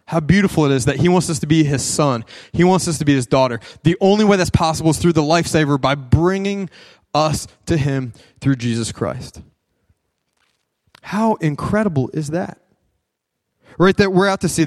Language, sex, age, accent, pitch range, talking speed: English, male, 20-39, American, 130-165 Hz, 190 wpm